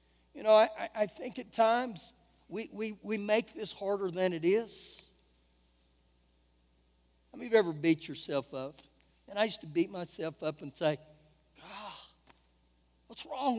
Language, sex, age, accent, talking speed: English, male, 60-79, American, 155 wpm